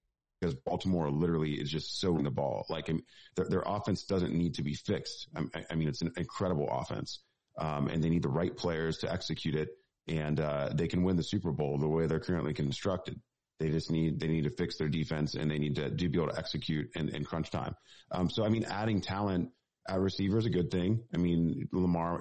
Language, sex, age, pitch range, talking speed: English, male, 30-49, 75-90 Hz, 235 wpm